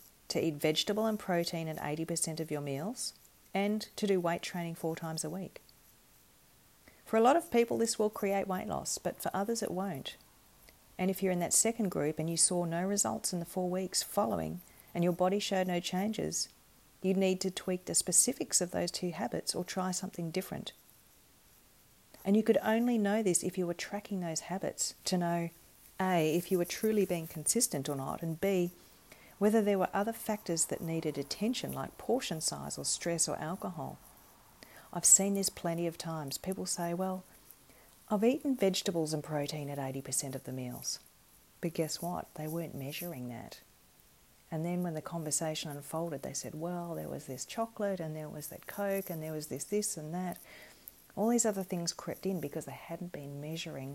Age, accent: 40-59, Australian